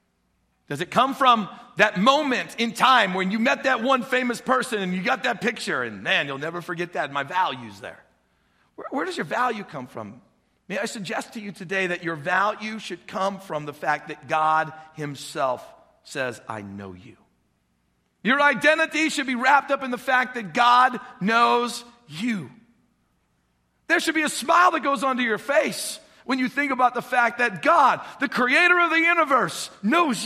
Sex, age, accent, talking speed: male, 40-59, American, 185 wpm